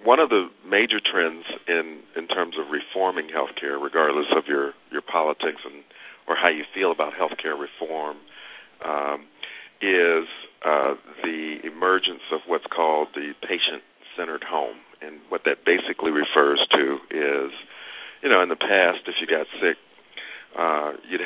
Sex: male